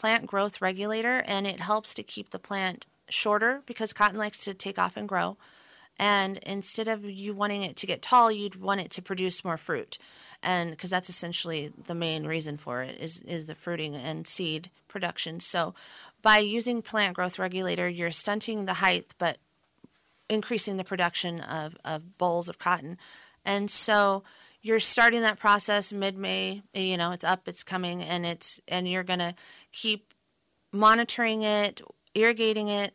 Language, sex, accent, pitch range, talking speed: English, female, American, 180-210 Hz, 170 wpm